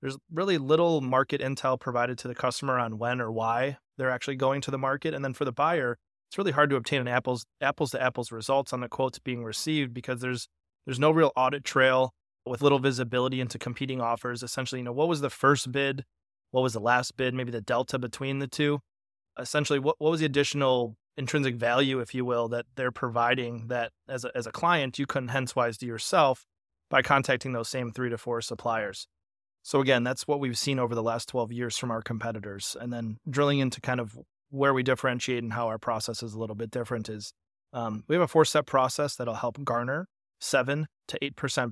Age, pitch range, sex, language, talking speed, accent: 30-49, 120-135 Hz, male, English, 215 wpm, American